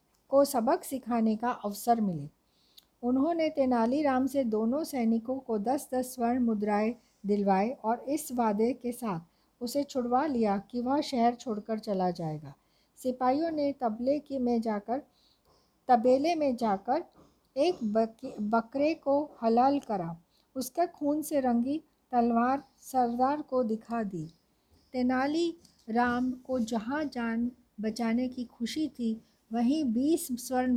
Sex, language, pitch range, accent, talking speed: female, Hindi, 225-280 Hz, native, 130 wpm